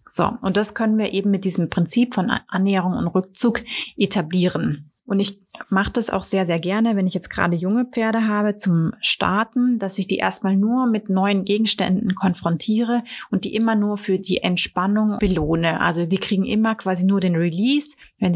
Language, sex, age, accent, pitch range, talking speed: German, female, 30-49, German, 180-215 Hz, 185 wpm